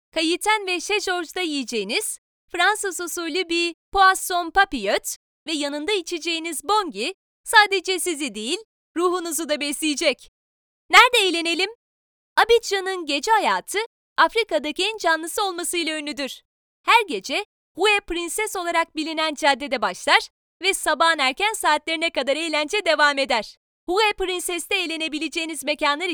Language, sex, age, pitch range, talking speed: Turkish, female, 30-49, 315-390 Hz, 110 wpm